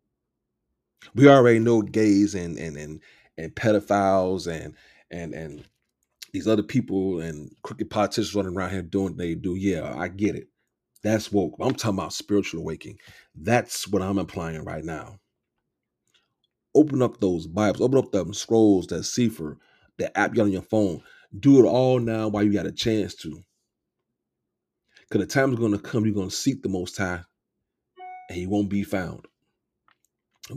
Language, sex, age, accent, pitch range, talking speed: English, male, 30-49, American, 95-110 Hz, 170 wpm